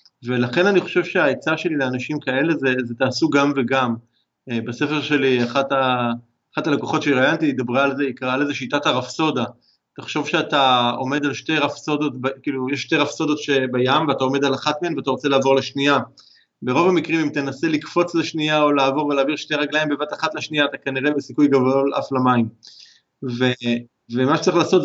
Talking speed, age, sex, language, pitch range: 175 wpm, 30-49, male, Hebrew, 130-150 Hz